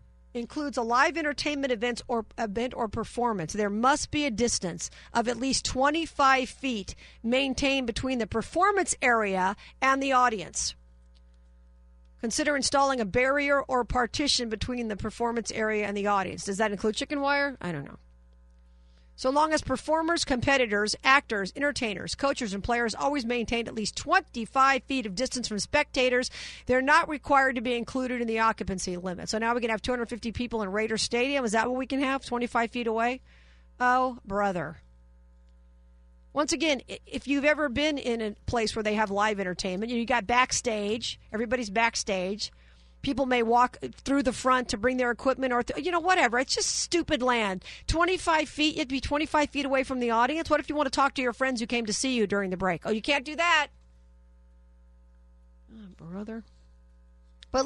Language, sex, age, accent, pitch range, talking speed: English, female, 50-69, American, 205-275 Hz, 180 wpm